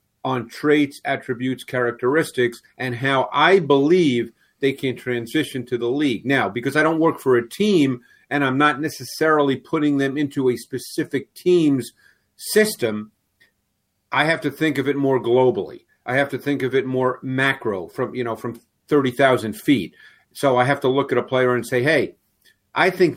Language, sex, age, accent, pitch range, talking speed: English, male, 50-69, American, 120-140 Hz, 175 wpm